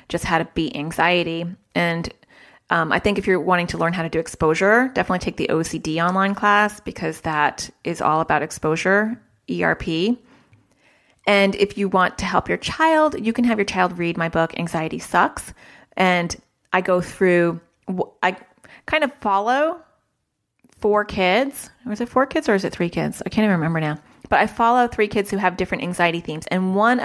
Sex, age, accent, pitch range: female, 30-49, American, 165-210 Hz